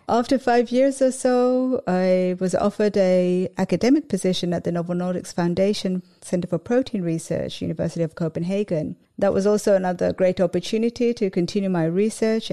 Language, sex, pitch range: English, female, 170-205 Hz